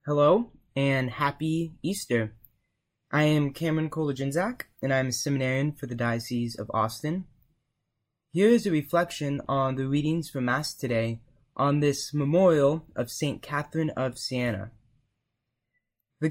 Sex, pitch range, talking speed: male, 125-160 Hz, 135 wpm